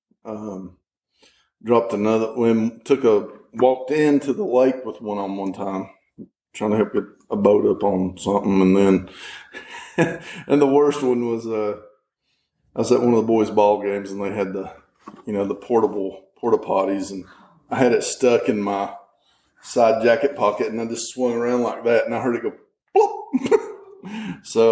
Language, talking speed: English, 180 wpm